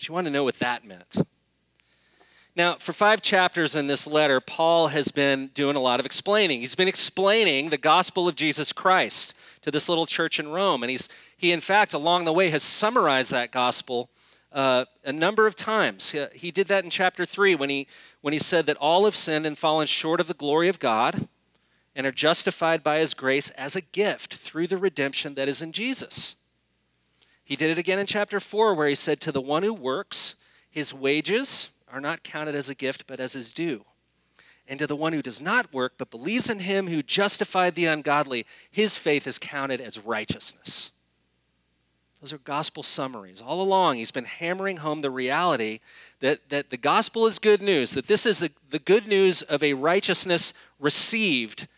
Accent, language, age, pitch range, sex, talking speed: American, English, 40-59, 135-185 Hz, male, 200 wpm